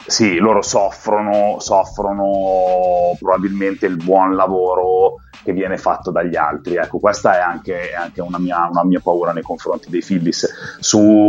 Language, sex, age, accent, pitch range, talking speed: Italian, male, 30-49, native, 95-115 Hz, 145 wpm